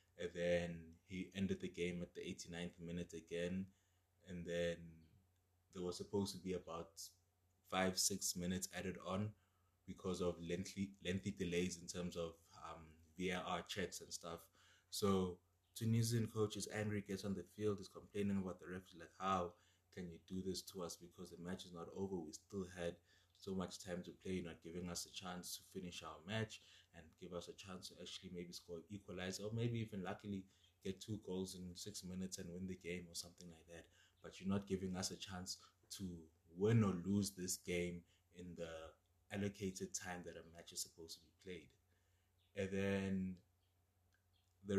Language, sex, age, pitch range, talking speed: English, male, 20-39, 85-95 Hz, 185 wpm